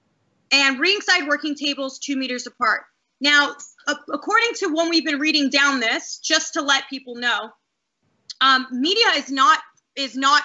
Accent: American